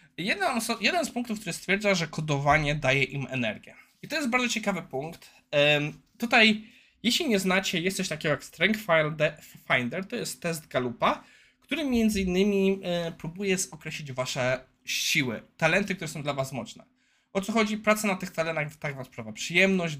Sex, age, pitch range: male, 20-39, 140-200 Hz